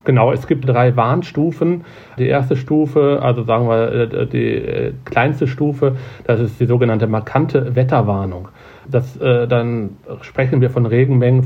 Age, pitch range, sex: 40-59, 120-130 Hz, male